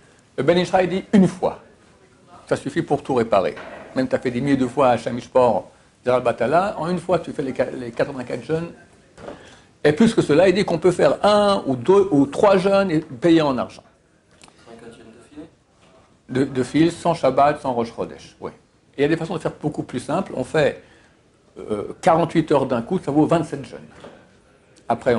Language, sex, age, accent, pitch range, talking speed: French, male, 60-79, French, 125-165 Hz, 195 wpm